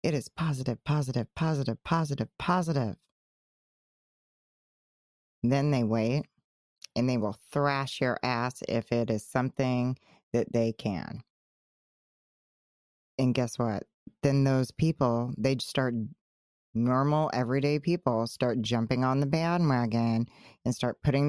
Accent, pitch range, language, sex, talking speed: American, 120-145 Hz, English, female, 120 wpm